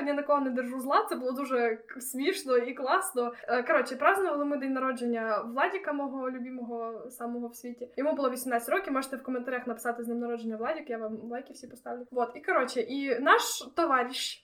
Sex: female